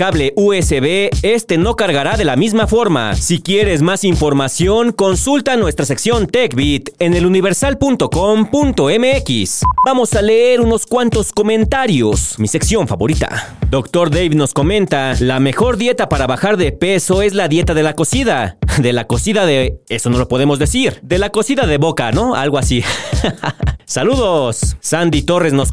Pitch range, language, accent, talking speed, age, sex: 145-215 Hz, Spanish, Mexican, 155 wpm, 40-59, male